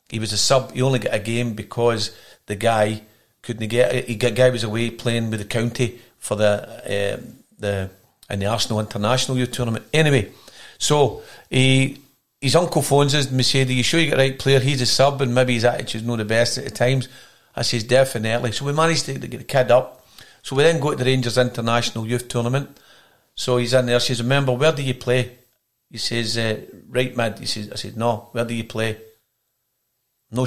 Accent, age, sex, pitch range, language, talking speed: British, 50-69, male, 115-135 Hz, English, 215 wpm